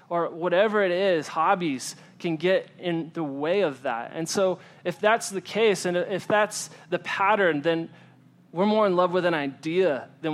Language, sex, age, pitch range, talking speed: English, male, 20-39, 165-205 Hz, 185 wpm